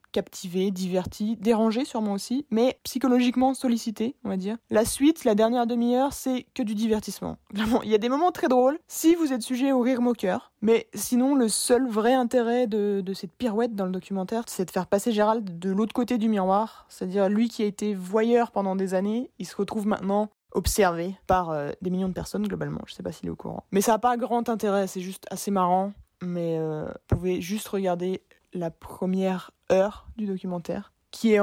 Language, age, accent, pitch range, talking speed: French, 20-39, French, 190-240 Hz, 205 wpm